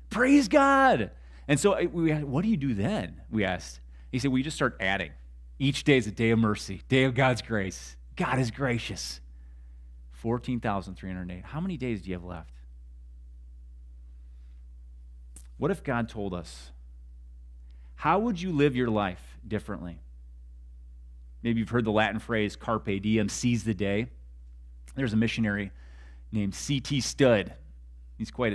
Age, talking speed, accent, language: 30-49, 155 wpm, American, English